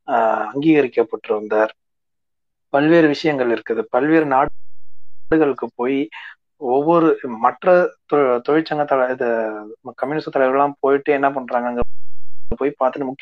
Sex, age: male, 30-49